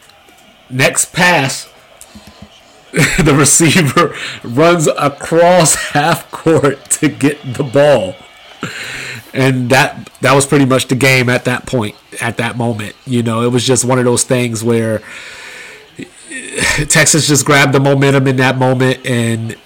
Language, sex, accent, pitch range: English, male, American, 130-160 Hz